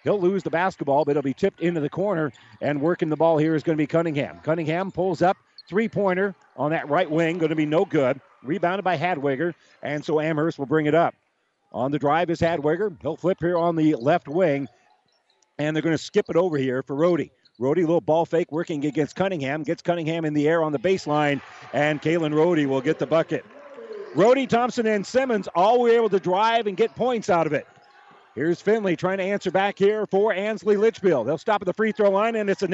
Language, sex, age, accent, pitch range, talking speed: English, male, 50-69, American, 155-200 Hz, 230 wpm